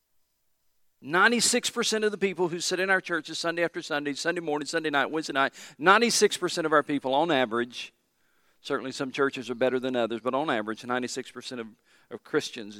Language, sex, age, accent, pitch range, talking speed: English, male, 40-59, American, 125-170 Hz, 175 wpm